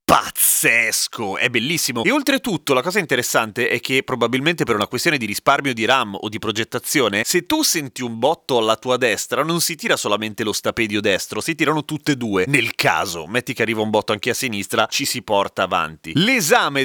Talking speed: 200 wpm